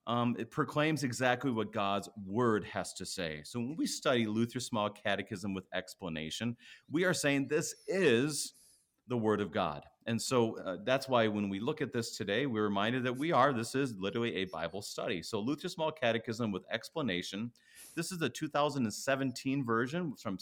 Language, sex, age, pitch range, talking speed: English, male, 40-59, 95-135 Hz, 180 wpm